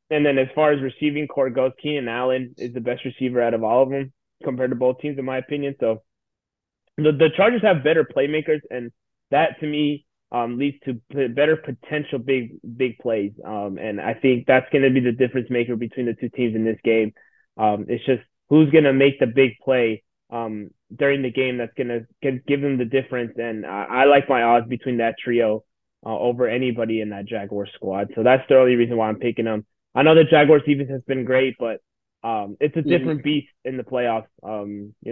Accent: American